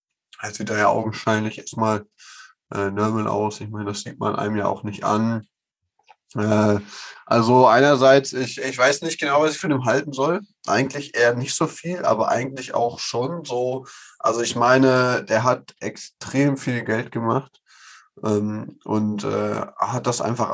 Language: German